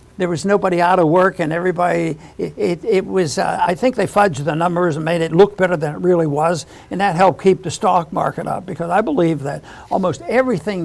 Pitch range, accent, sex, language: 165-195 Hz, American, male, English